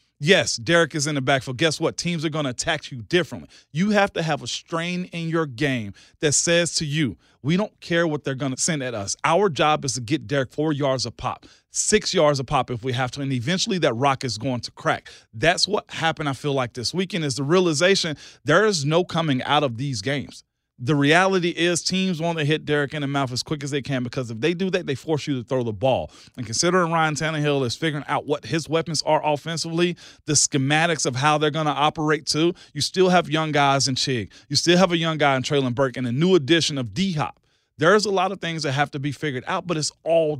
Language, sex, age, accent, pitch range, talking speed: English, male, 40-59, American, 140-175 Hz, 250 wpm